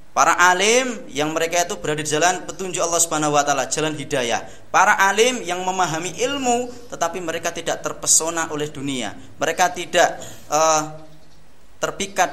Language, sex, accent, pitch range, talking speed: Indonesian, male, native, 150-195 Hz, 145 wpm